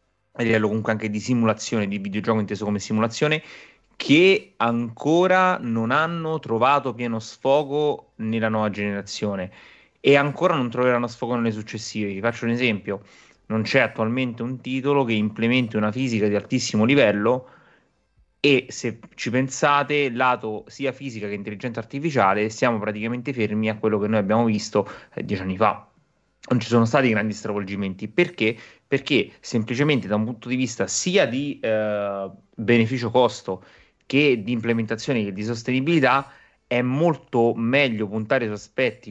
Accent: native